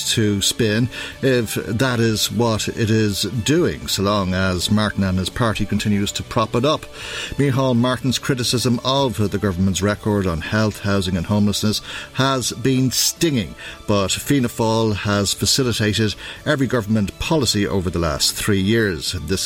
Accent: Irish